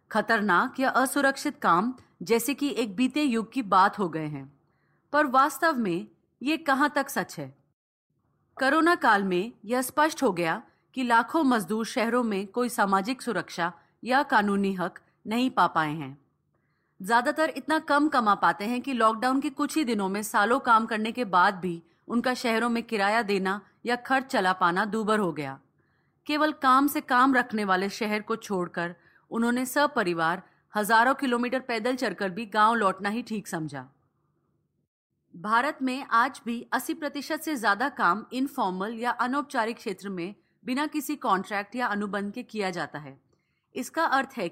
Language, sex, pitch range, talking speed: Hindi, female, 185-255 Hz, 165 wpm